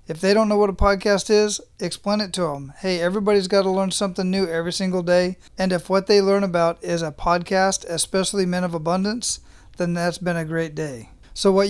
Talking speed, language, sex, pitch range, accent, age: 220 wpm, English, male, 170-195 Hz, American, 40-59